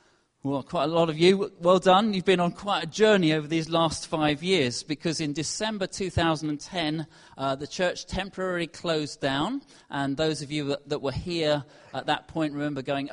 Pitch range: 140-170 Hz